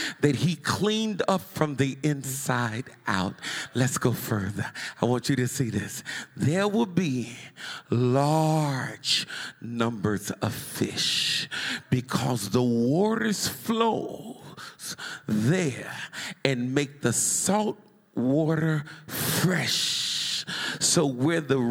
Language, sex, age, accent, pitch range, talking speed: English, male, 50-69, American, 135-215 Hz, 105 wpm